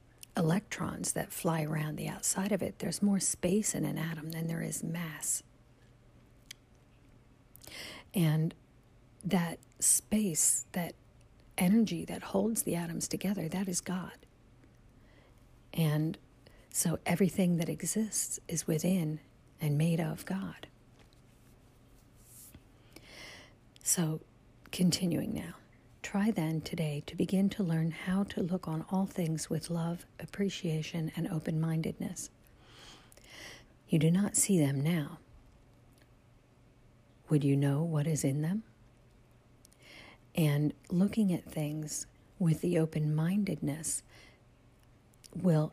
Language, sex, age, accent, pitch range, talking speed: English, female, 50-69, American, 125-175 Hz, 110 wpm